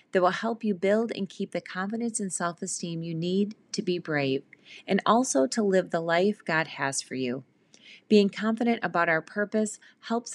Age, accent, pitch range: 30-49, American, 180-240 Hz